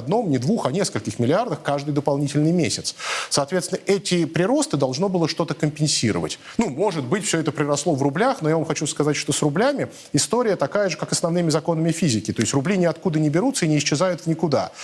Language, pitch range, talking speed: Russian, 150-195 Hz, 200 wpm